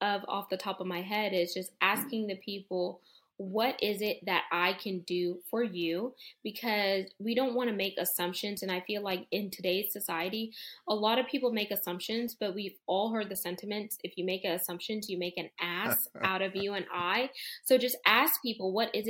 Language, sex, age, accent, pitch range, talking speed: English, female, 10-29, American, 185-215 Hz, 205 wpm